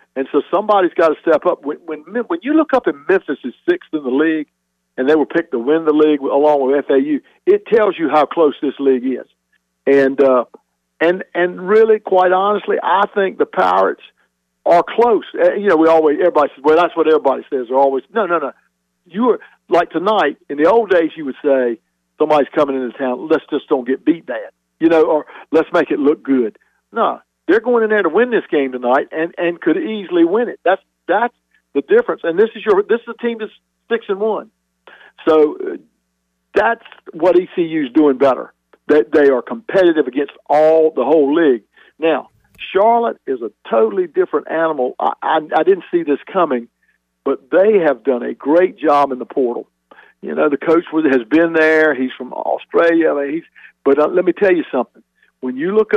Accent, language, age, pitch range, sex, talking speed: American, English, 60-79, 135-205 Hz, male, 210 wpm